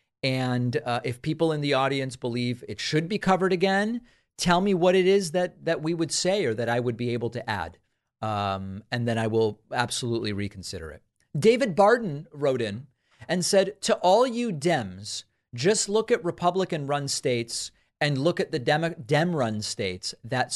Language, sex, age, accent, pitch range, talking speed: English, male, 40-59, American, 115-150 Hz, 180 wpm